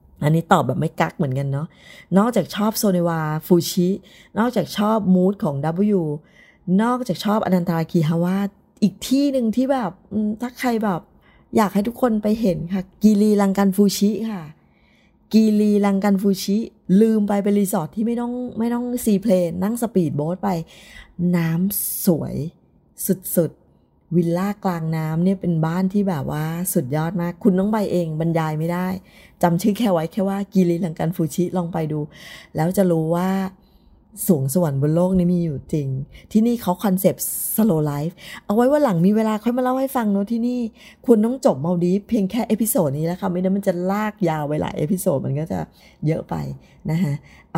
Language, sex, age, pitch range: Thai, female, 20-39, 165-205 Hz